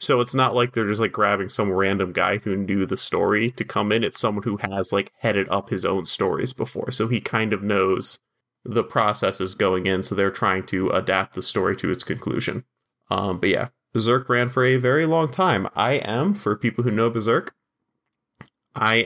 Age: 20-39